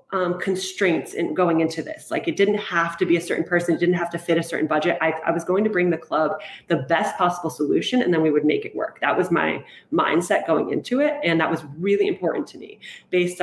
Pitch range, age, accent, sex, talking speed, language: 165-210 Hz, 30-49, American, female, 255 wpm, English